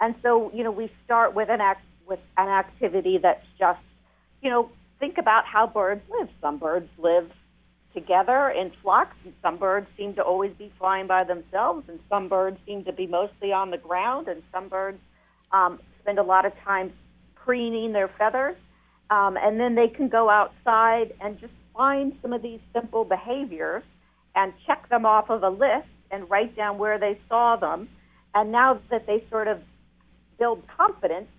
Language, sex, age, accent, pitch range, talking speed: English, female, 50-69, American, 180-235 Hz, 185 wpm